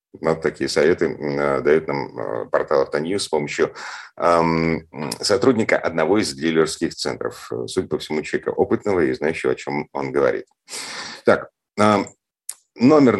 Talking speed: 125 wpm